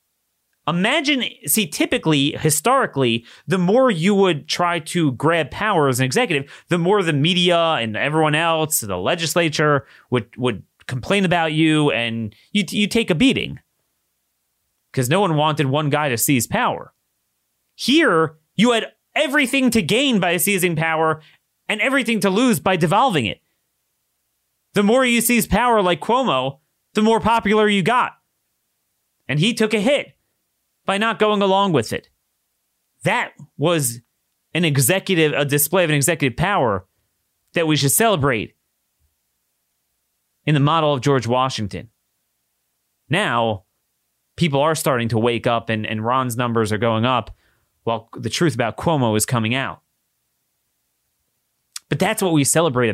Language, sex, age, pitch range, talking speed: English, male, 30-49, 125-195 Hz, 145 wpm